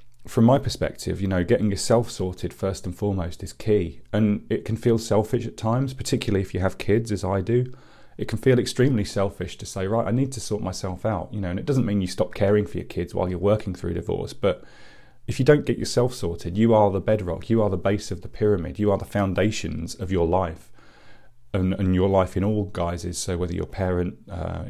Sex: male